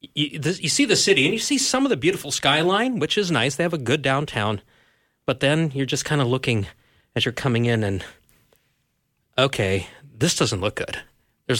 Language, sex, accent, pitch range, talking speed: English, male, American, 105-140 Hz, 205 wpm